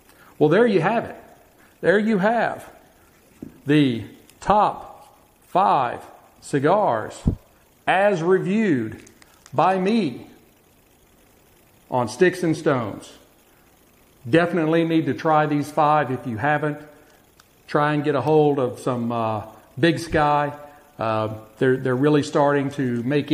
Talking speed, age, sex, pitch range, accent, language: 120 wpm, 50-69, male, 125-150 Hz, American, English